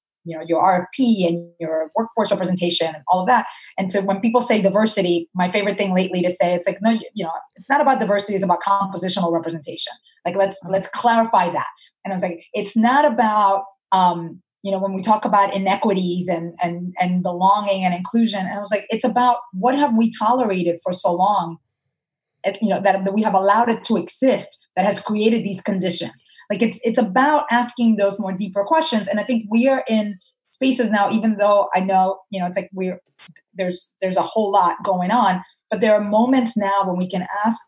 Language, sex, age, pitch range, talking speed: English, female, 30-49, 180-220 Hz, 215 wpm